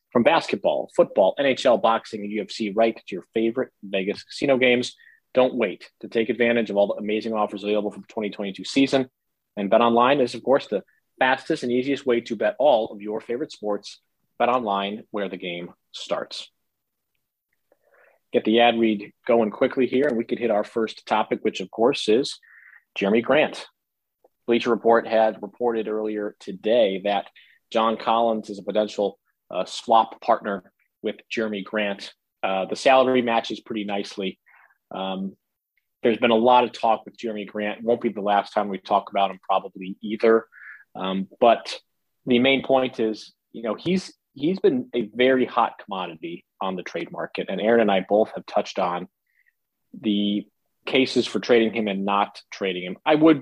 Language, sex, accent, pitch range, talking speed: English, male, American, 100-120 Hz, 175 wpm